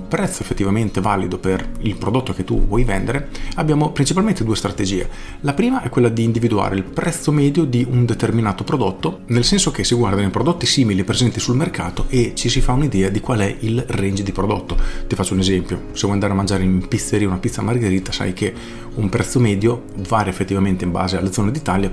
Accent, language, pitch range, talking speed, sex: native, Italian, 95-120 Hz, 210 wpm, male